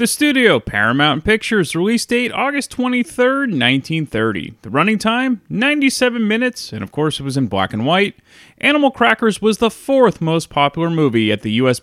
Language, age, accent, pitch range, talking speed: English, 30-49, American, 125-205 Hz, 175 wpm